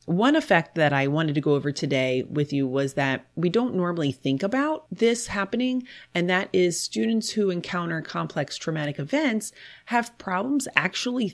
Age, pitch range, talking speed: 30-49, 145-190 Hz, 170 wpm